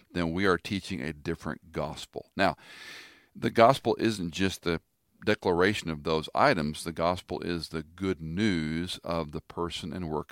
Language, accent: English, American